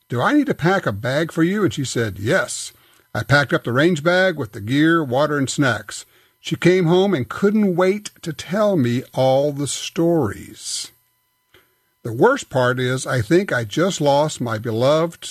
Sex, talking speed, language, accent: male, 190 wpm, English, American